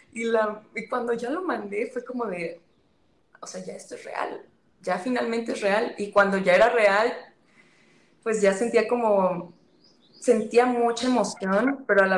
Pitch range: 190-245 Hz